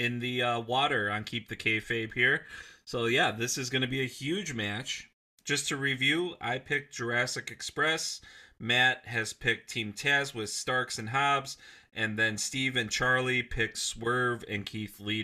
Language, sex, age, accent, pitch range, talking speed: English, male, 30-49, American, 105-135 Hz, 175 wpm